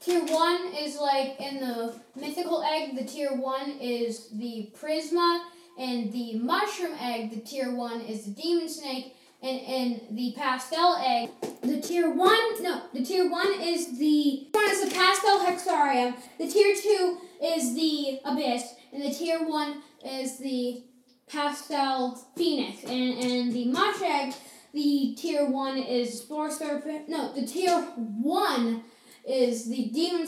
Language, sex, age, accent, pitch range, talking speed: English, female, 10-29, American, 250-340 Hz, 145 wpm